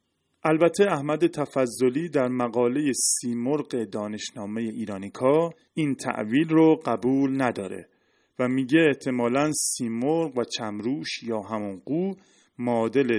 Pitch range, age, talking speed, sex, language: 110-155 Hz, 30-49, 100 wpm, male, Persian